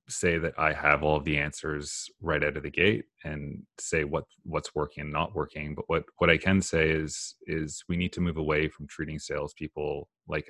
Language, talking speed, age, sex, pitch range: English, 215 wpm, 30-49, male, 75-85 Hz